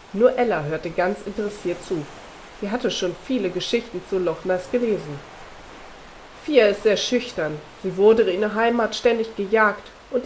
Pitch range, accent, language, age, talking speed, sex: 180-230 Hz, German, German, 30-49, 160 wpm, female